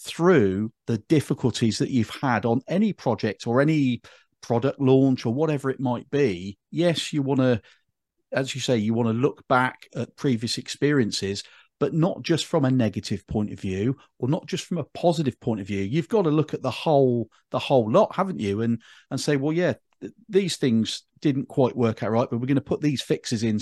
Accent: British